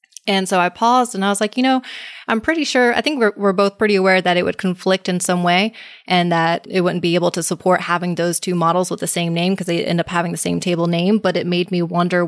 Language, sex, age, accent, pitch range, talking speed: English, female, 20-39, American, 170-195 Hz, 285 wpm